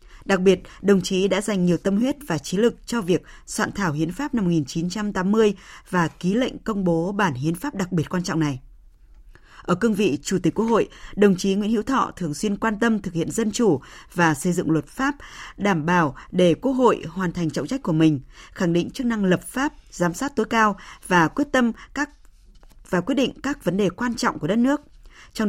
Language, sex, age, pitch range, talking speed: Vietnamese, female, 20-39, 175-225 Hz, 225 wpm